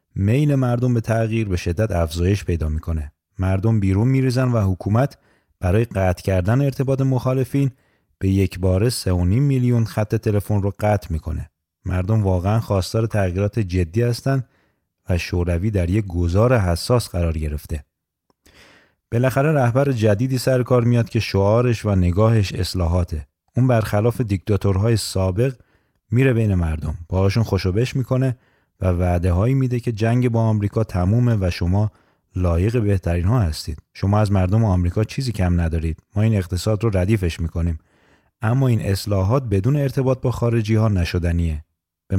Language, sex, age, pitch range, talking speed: Persian, male, 30-49, 90-120 Hz, 145 wpm